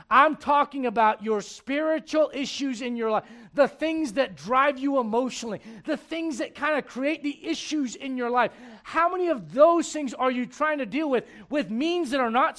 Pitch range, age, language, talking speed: 170-275 Hz, 40-59, English, 200 wpm